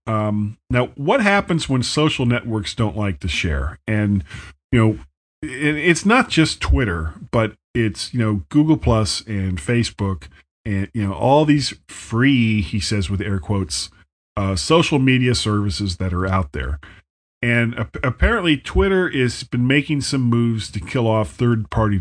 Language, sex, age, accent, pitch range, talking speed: English, male, 40-59, American, 95-120 Hz, 160 wpm